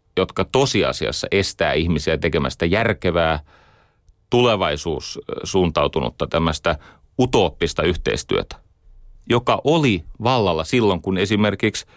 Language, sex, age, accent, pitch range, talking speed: Finnish, male, 30-49, native, 90-110 Hz, 80 wpm